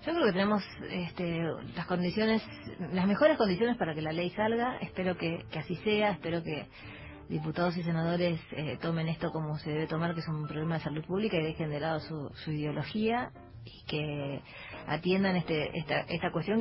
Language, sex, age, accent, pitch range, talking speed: Spanish, female, 20-39, Argentinian, 160-195 Hz, 190 wpm